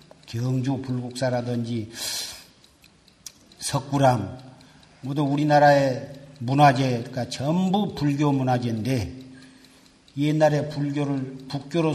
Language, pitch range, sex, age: Korean, 130-160 Hz, male, 50-69